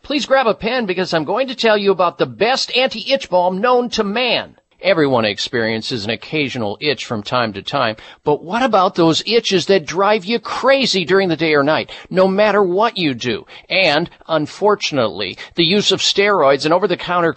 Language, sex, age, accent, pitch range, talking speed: English, male, 50-69, American, 175-230 Hz, 185 wpm